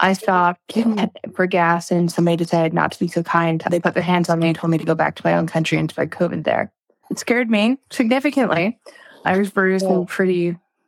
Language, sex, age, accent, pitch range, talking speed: English, female, 20-39, American, 165-190 Hz, 230 wpm